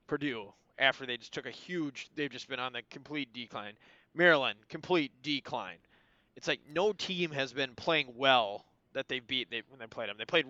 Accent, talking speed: American, 205 wpm